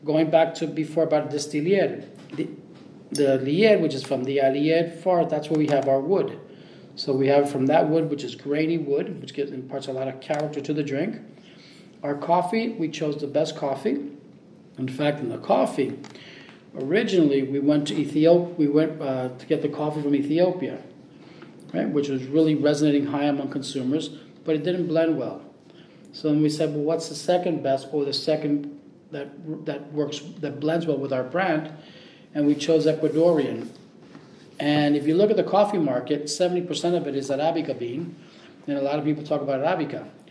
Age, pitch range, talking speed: 40-59, 145-165 Hz, 190 wpm